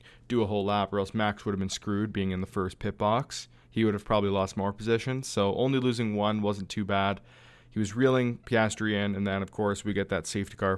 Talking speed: 250 wpm